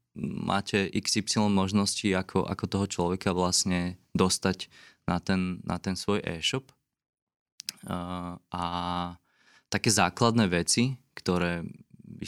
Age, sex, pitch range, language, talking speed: 20-39, male, 90-105 Hz, Slovak, 110 wpm